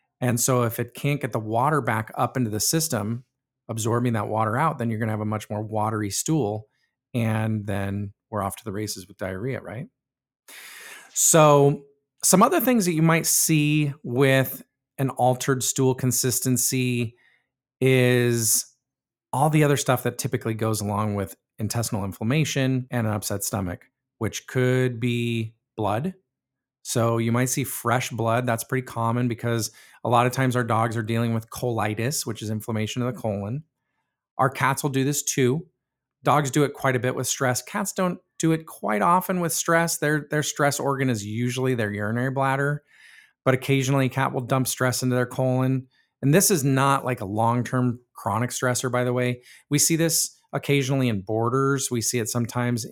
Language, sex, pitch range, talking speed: English, male, 115-135 Hz, 180 wpm